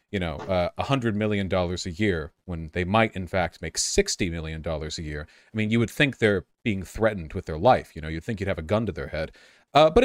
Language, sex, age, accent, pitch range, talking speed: English, male, 40-59, American, 90-115 Hz, 265 wpm